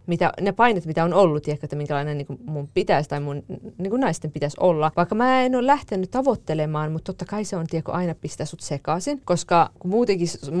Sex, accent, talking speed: female, native, 215 wpm